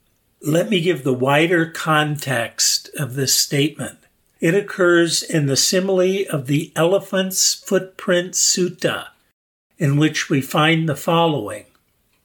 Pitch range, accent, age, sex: 140-170 Hz, American, 50-69, male